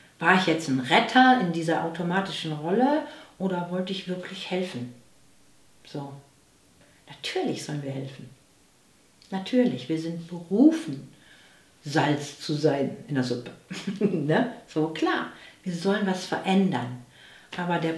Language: German